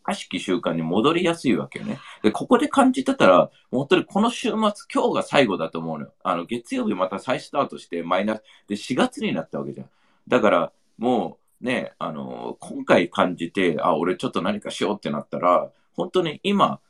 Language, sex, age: Japanese, male, 40-59